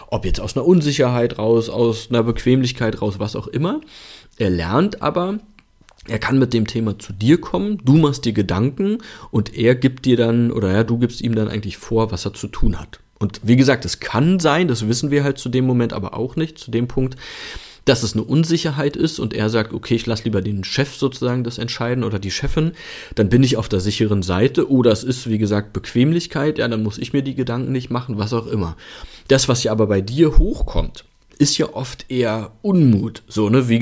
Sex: male